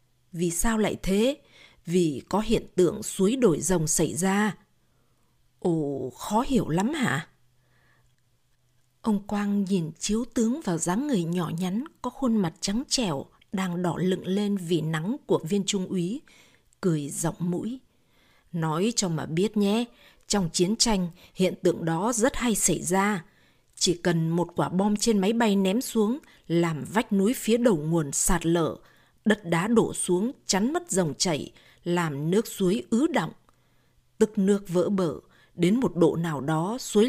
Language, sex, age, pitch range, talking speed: Vietnamese, female, 20-39, 165-220 Hz, 165 wpm